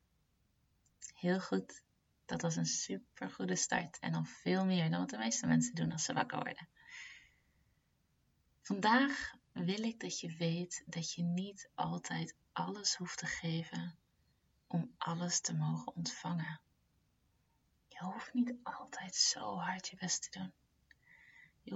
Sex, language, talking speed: female, Dutch, 145 wpm